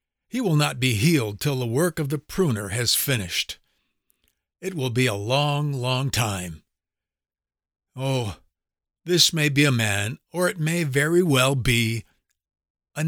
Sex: male